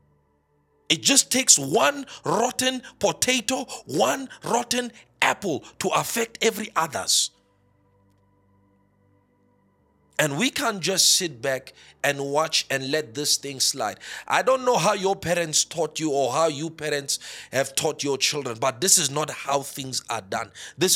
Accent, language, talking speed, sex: South African, English, 145 wpm, male